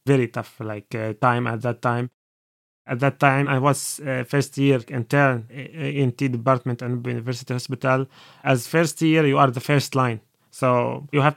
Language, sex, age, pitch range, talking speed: English, male, 30-49, 125-145 Hz, 185 wpm